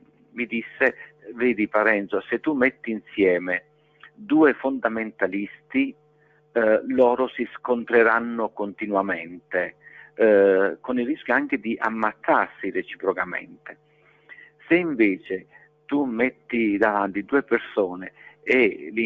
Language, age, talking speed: Italian, 50-69, 100 wpm